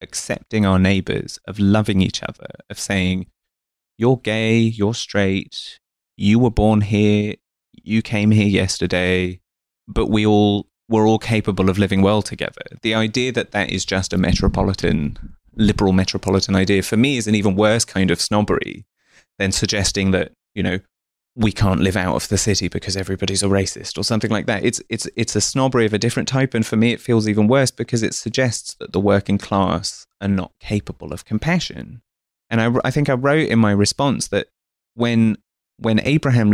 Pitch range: 95-120 Hz